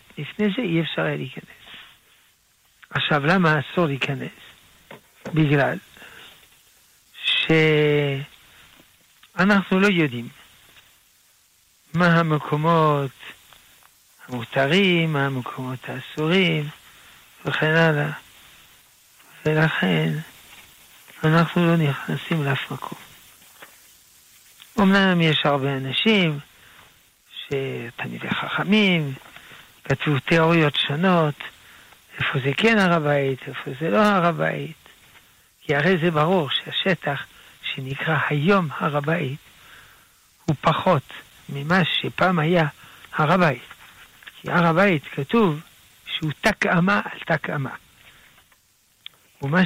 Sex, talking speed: male, 85 wpm